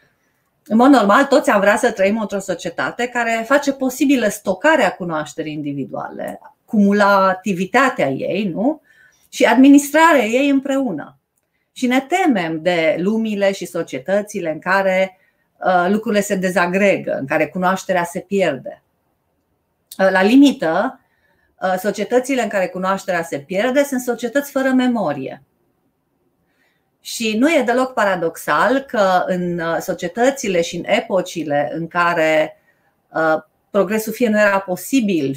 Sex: female